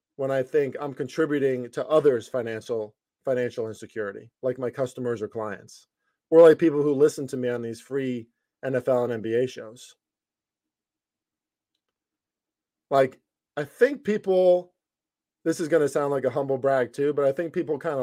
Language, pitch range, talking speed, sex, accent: English, 125-150 Hz, 160 wpm, male, American